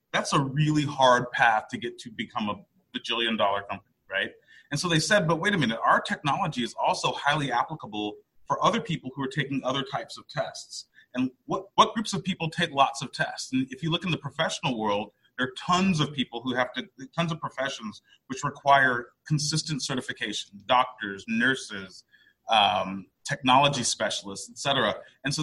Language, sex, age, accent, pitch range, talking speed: English, male, 30-49, American, 130-165 Hz, 190 wpm